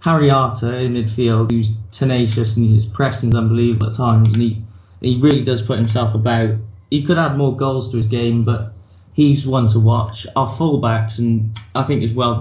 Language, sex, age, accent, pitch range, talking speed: English, male, 20-39, British, 110-135 Hz, 200 wpm